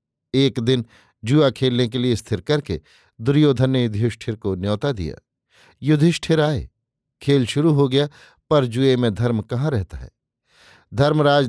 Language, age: Hindi, 50-69